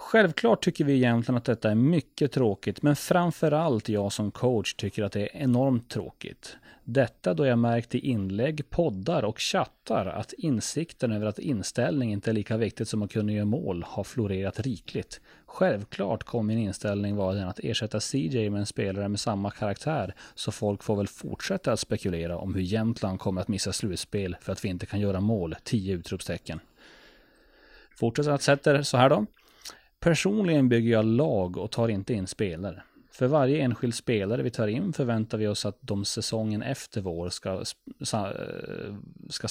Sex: male